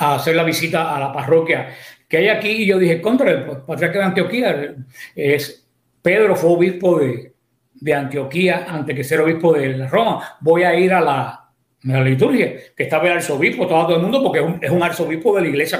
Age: 60-79